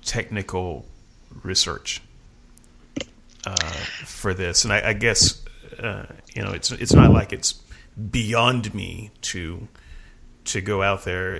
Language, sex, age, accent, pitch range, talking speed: English, male, 30-49, American, 95-115 Hz, 125 wpm